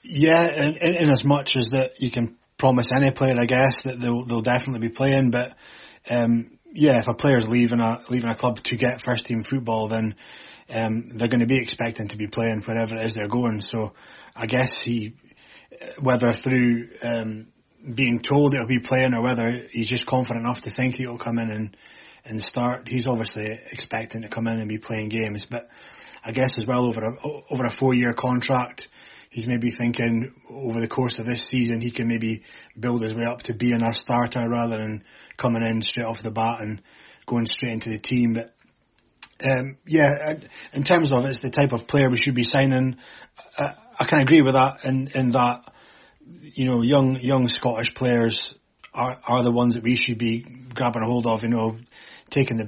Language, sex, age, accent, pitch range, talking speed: English, male, 20-39, British, 115-130 Hz, 205 wpm